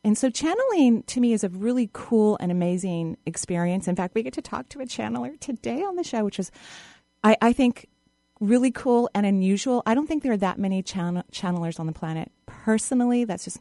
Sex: female